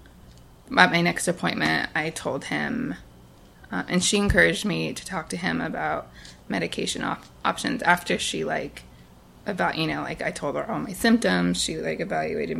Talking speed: 165 wpm